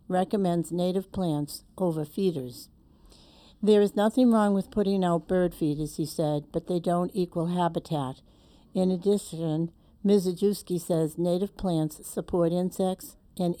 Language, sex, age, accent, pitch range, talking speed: English, female, 60-79, American, 165-195 Hz, 130 wpm